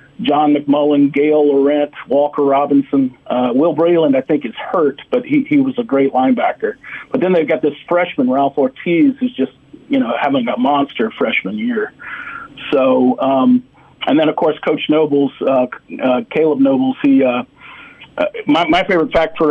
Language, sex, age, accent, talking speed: English, male, 50-69, American, 170 wpm